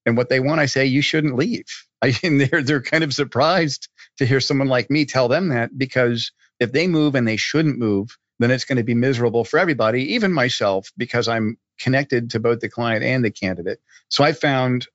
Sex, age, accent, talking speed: male, 50-69, American, 220 wpm